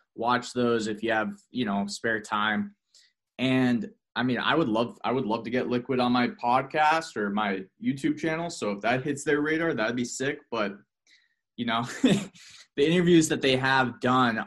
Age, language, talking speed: 20-39, English, 190 wpm